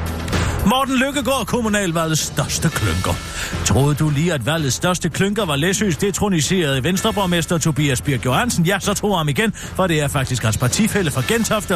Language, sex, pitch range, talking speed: Danish, male, 135-195 Hz, 170 wpm